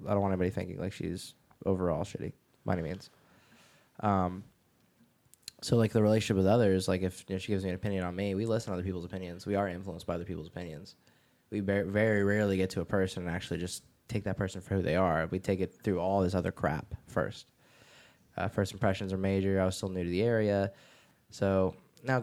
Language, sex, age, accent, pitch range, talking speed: English, male, 10-29, American, 90-105 Hz, 220 wpm